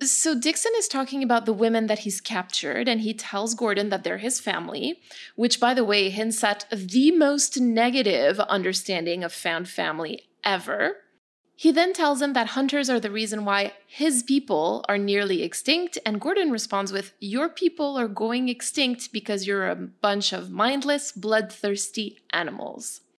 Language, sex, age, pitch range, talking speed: English, female, 20-39, 200-275 Hz, 165 wpm